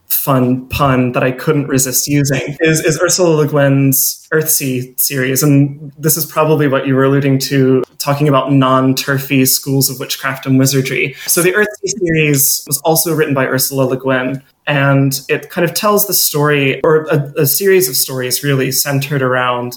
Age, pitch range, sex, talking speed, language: 20-39, 130-155 Hz, male, 175 wpm, English